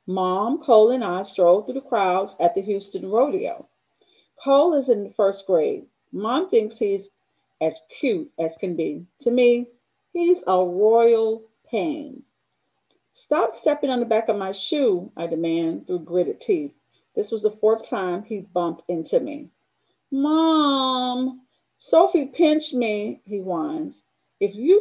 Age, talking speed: 40-59, 150 wpm